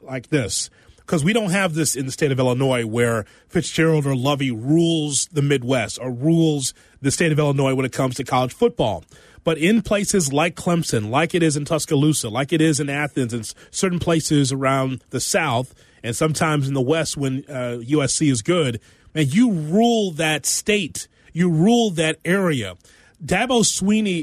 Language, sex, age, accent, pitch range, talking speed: English, male, 30-49, American, 145-195 Hz, 180 wpm